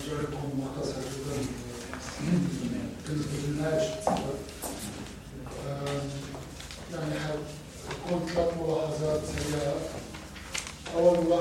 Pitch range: 140-160 Hz